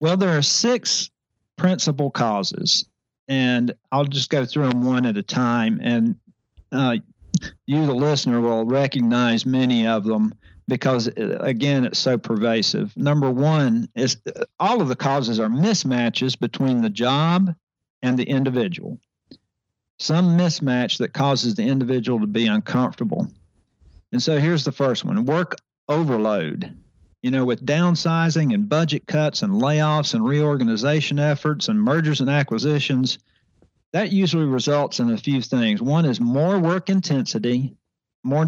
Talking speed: 145 wpm